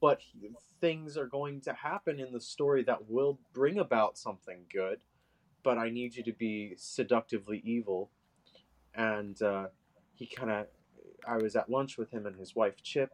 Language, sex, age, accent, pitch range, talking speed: English, male, 20-39, American, 95-120 Hz, 175 wpm